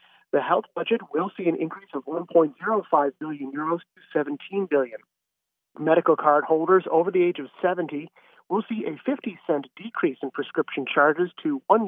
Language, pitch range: English, 155-220 Hz